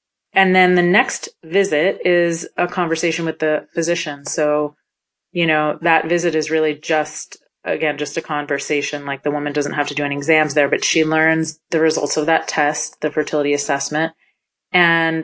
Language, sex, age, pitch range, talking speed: English, female, 30-49, 145-170 Hz, 175 wpm